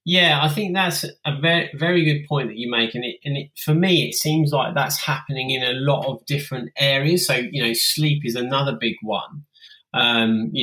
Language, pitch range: English, 120-155 Hz